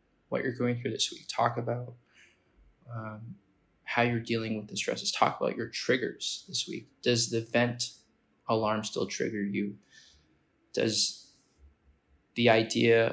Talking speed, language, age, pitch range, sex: 140 wpm, English, 20-39, 105-120 Hz, male